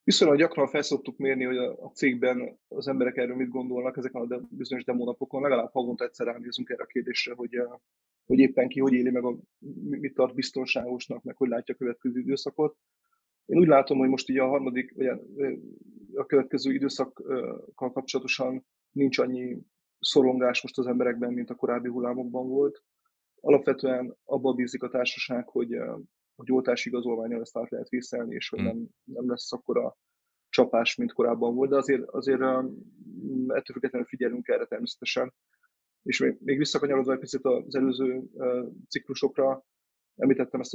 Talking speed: 160 wpm